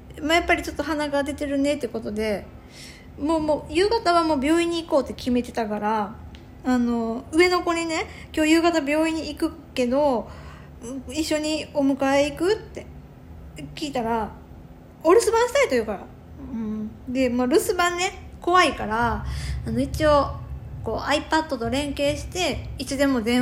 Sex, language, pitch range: female, Japanese, 240-340 Hz